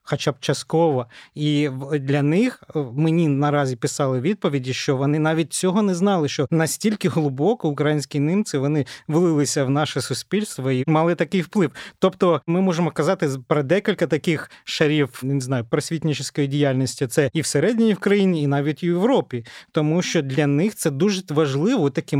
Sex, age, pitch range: male, 30-49, 140-180 Hz